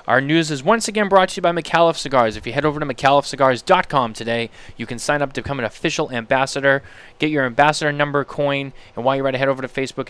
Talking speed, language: 240 wpm, English